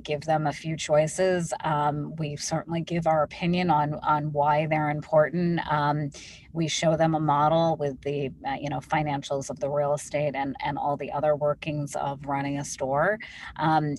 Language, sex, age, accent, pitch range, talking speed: English, female, 30-49, American, 145-160 Hz, 185 wpm